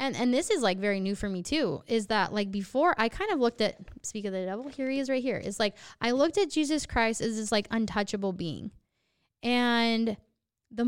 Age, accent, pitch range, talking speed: 10-29, American, 200-245 Hz, 230 wpm